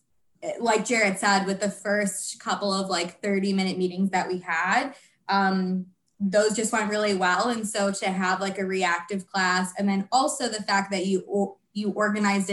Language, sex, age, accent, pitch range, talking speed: English, female, 20-39, American, 190-225 Hz, 180 wpm